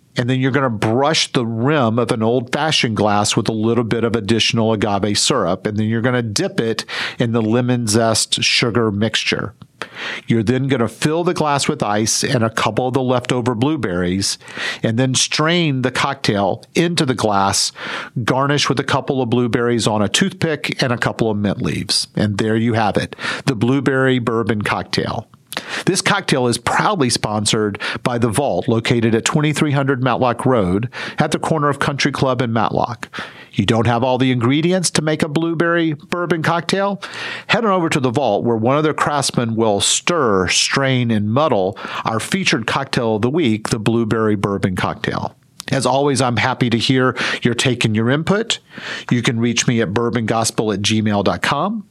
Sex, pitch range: male, 115-145 Hz